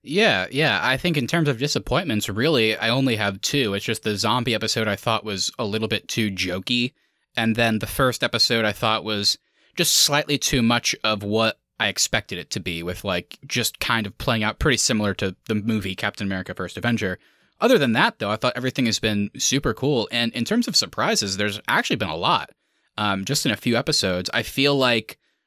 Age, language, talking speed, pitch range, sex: 20-39, English, 215 wpm, 105-130 Hz, male